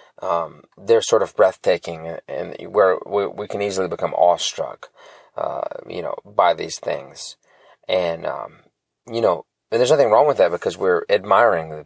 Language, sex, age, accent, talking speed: English, male, 30-49, American, 165 wpm